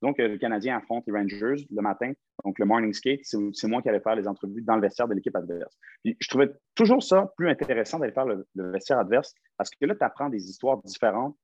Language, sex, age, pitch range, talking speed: French, male, 30-49, 115-165 Hz, 245 wpm